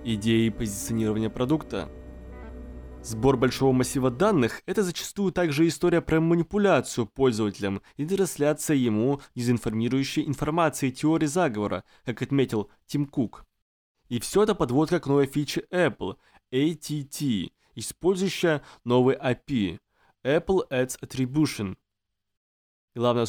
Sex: male